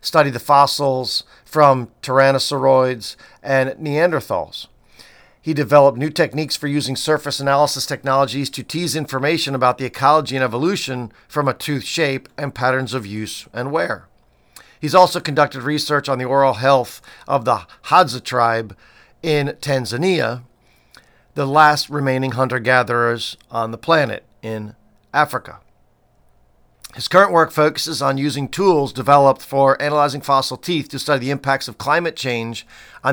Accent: American